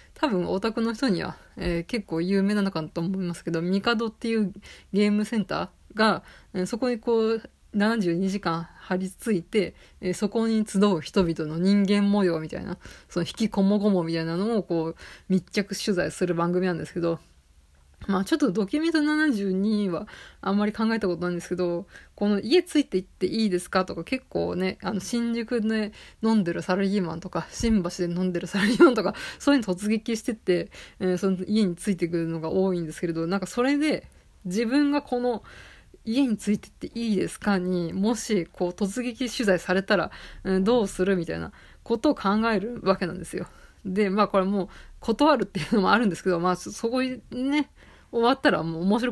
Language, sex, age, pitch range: Japanese, female, 20-39, 180-230 Hz